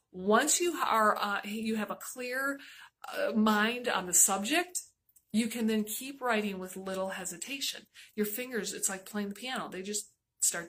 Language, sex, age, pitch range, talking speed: English, female, 30-49, 190-245 Hz, 175 wpm